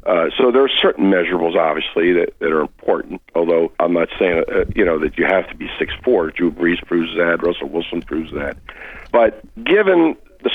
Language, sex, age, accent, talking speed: English, male, 50-69, American, 205 wpm